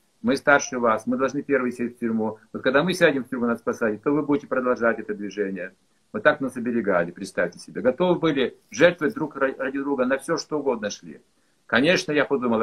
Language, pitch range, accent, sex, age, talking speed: Russian, 115-145 Hz, native, male, 50-69, 205 wpm